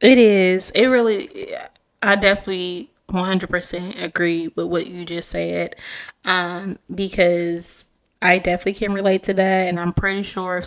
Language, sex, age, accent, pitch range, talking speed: English, female, 20-39, American, 170-190 Hz, 145 wpm